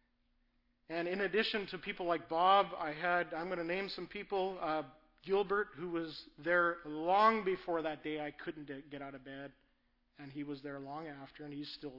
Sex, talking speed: male, 195 wpm